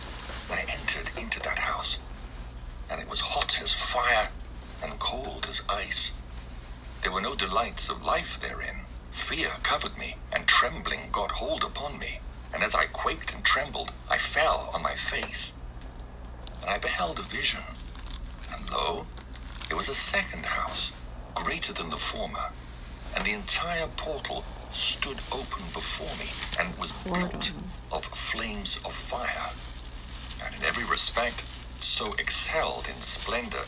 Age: 50-69